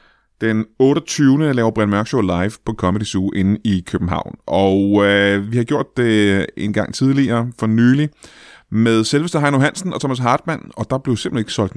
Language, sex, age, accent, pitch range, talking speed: Danish, male, 30-49, native, 105-140 Hz, 185 wpm